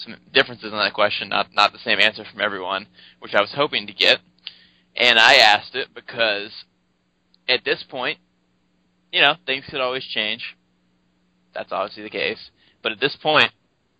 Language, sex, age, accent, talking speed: English, male, 20-39, American, 170 wpm